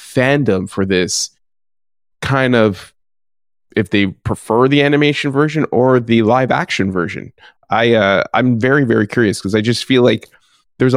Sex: male